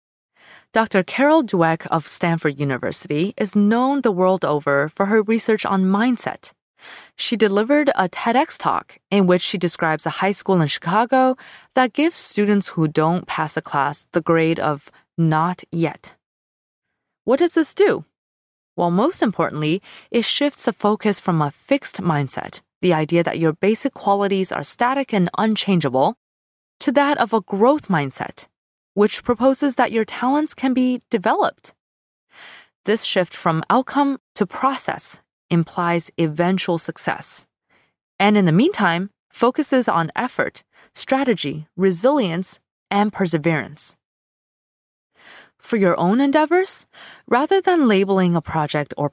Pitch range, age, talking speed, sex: 165-240 Hz, 20-39, 135 wpm, female